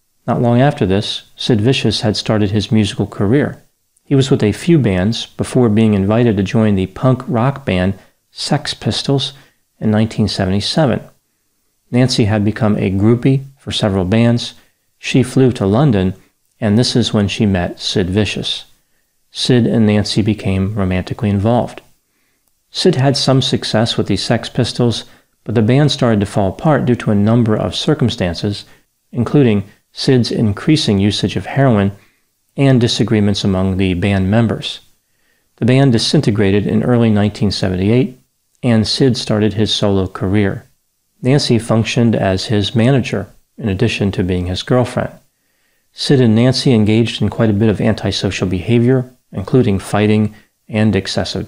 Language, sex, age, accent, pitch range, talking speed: English, male, 40-59, American, 100-125 Hz, 150 wpm